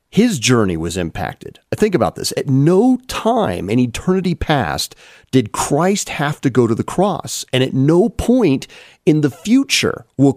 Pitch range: 125-175 Hz